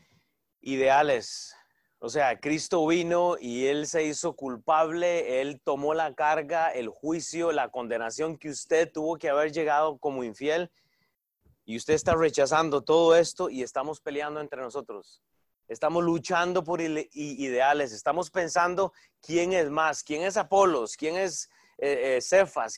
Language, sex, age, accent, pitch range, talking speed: Spanish, male, 30-49, Mexican, 150-200 Hz, 135 wpm